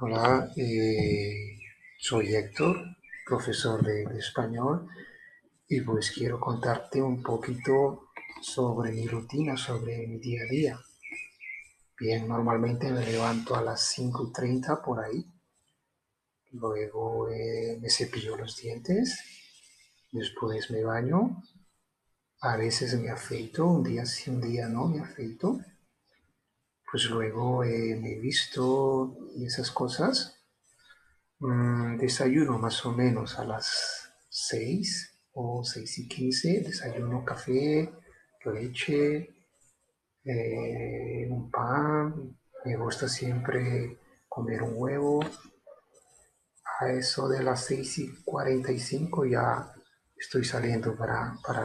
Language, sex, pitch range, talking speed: Spanish, male, 115-135 Hz, 110 wpm